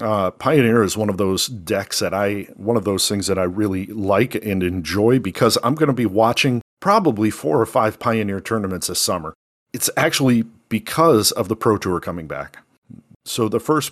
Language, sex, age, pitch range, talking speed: English, male, 40-59, 95-115 Hz, 195 wpm